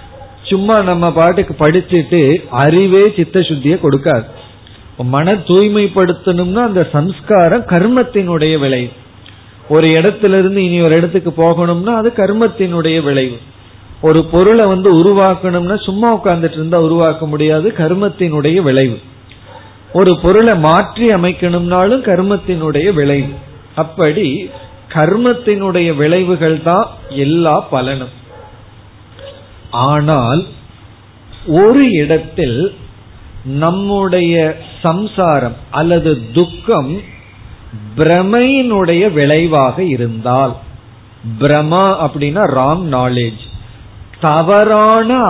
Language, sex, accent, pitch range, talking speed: Tamil, male, native, 130-185 Hz, 75 wpm